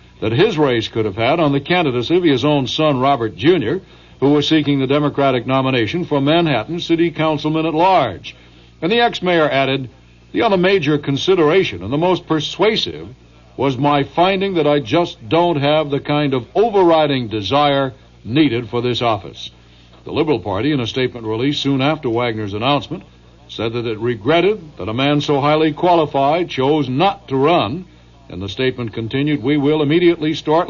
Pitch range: 115-155 Hz